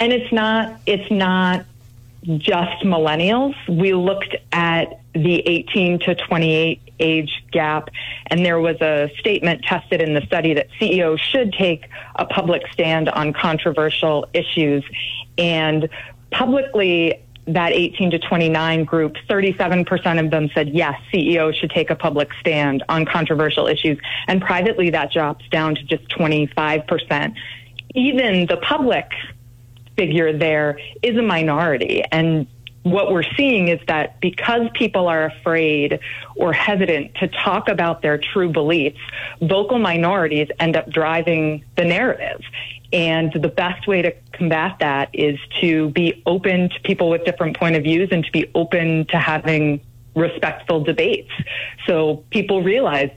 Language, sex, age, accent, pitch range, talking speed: English, female, 30-49, American, 150-180 Hz, 140 wpm